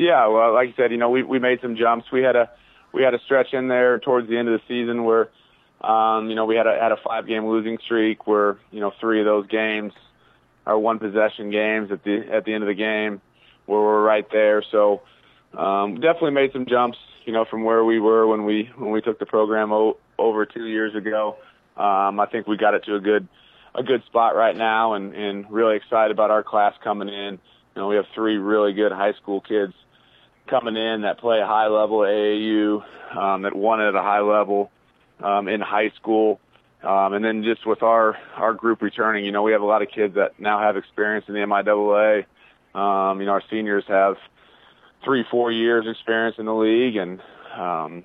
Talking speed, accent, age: 220 wpm, American, 30-49